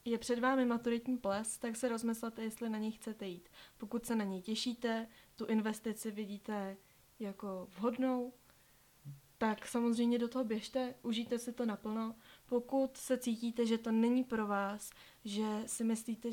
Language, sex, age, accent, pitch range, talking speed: Czech, female, 20-39, native, 215-235 Hz, 160 wpm